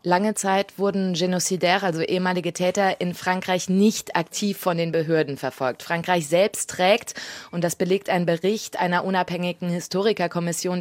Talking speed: 145 wpm